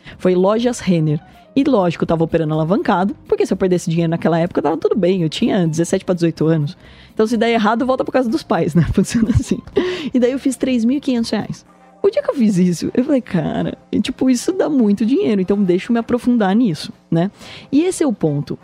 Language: Portuguese